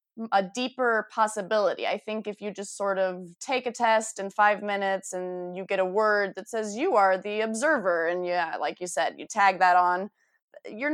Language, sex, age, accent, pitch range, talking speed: English, female, 20-39, American, 185-240 Hz, 205 wpm